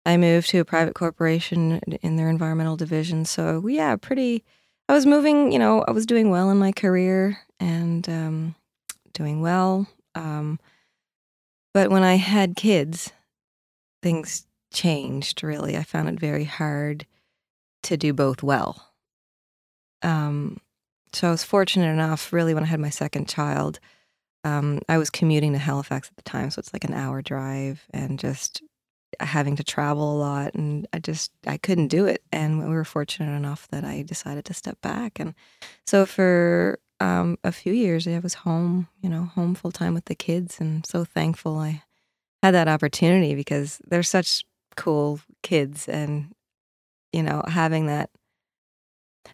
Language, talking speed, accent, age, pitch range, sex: English, 165 wpm, American, 20-39, 145-180 Hz, female